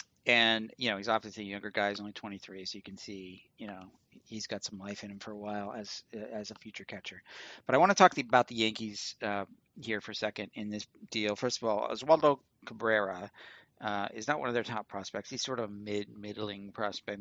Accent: American